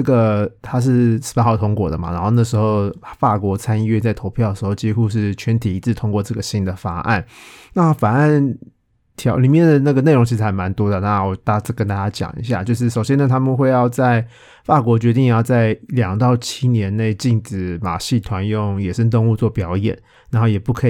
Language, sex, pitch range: Chinese, male, 100-120 Hz